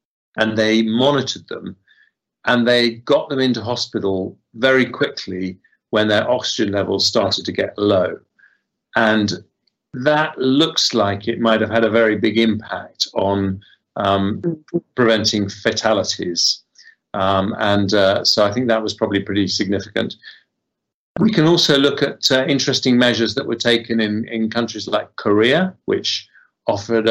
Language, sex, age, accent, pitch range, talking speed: English, male, 40-59, British, 105-120 Hz, 145 wpm